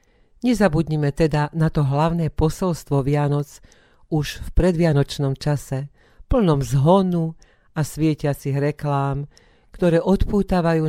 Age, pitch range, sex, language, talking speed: 50-69, 140-160 Hz, female, Slovak, 100 wpm